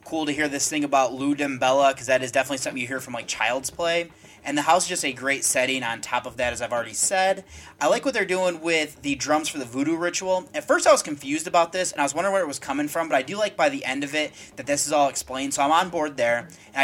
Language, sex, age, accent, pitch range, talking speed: English, male, 30-49, American, 130-160 Hz, 295 wpm